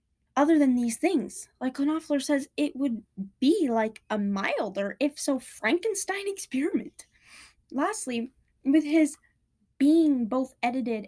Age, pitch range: 10-29, 235-325 Hz